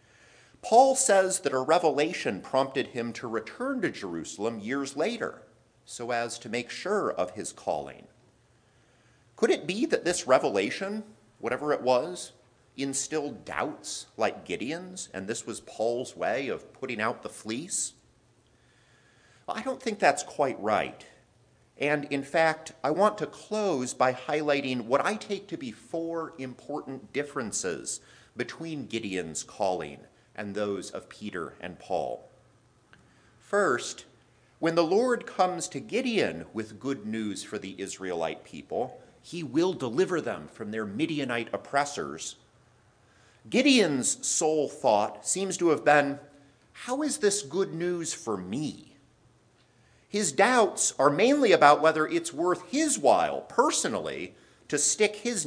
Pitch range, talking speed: 120-180 Hz, 135 wpm